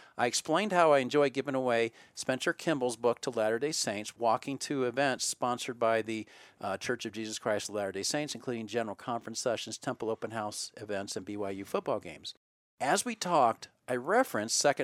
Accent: American